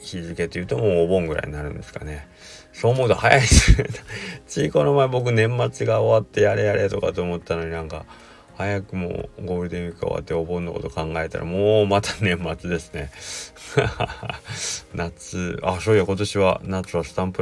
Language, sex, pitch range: Japanese, male, 75-90 Hz